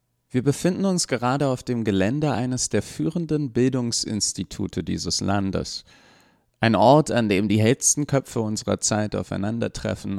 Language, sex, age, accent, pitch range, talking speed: German, male, 30-49, German, 95-125 Hz, 135 wpm